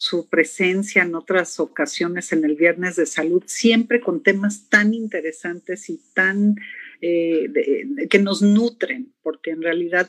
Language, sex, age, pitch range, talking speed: Spanish, female, 50-69, 170-215 Hz, 145 wpm